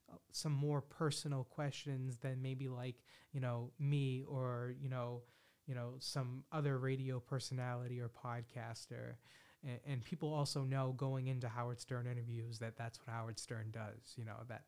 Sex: male